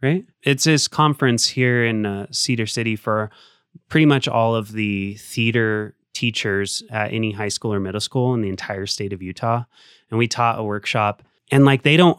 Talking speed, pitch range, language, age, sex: 190 wpm, 105-135 Hz, English, 20-39, male